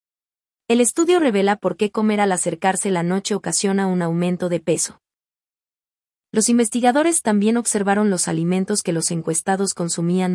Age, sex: 30-49, female